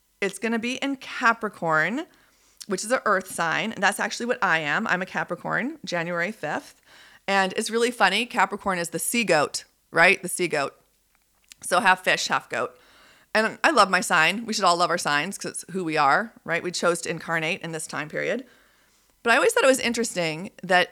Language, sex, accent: English, female, American